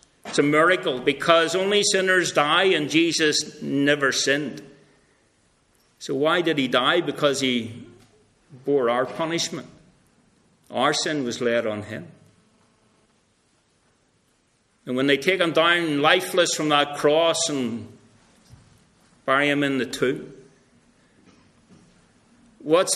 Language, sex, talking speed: English, male, 115 wpm